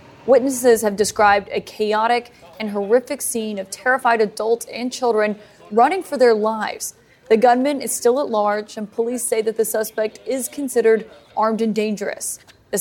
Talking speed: 165 wpm